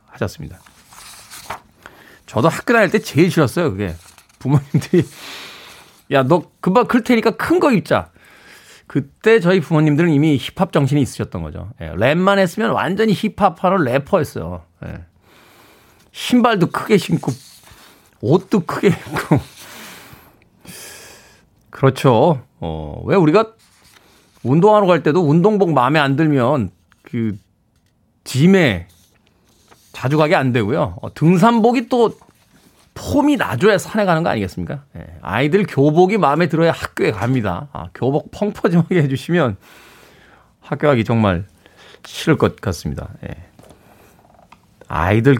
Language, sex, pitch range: Korean, male, 110-180 Hz